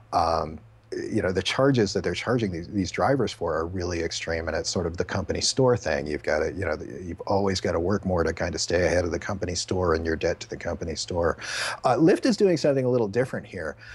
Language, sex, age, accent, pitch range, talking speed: English, male, 40-59, American, 110-145 Hz, 255 wpm